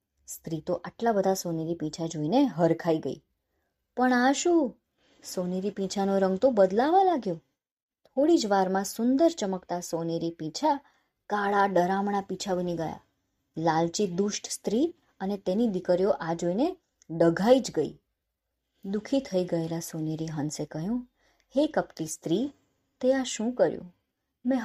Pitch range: 175-255 Hz